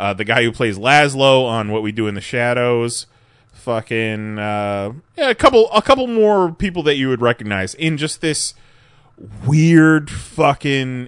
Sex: male